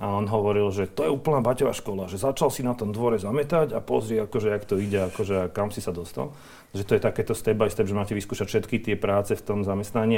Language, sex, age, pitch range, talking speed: Slovak, male, 40-59, 100-115 Hz, 250 wpm